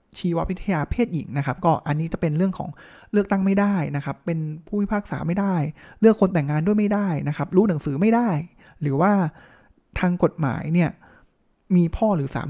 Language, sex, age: Thai, male, 20-39